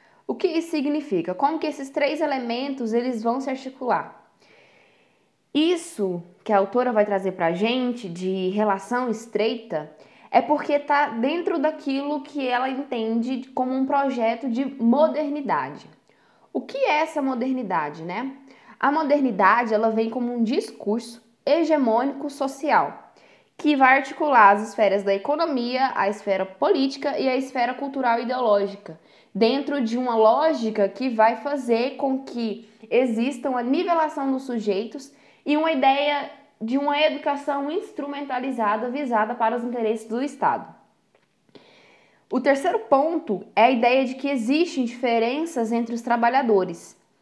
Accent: Brazilian